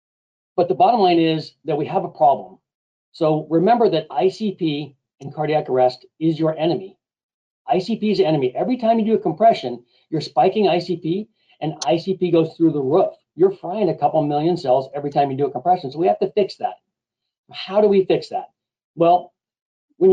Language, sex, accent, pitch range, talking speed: English, male, American, 155-195 Hz, 190 wpm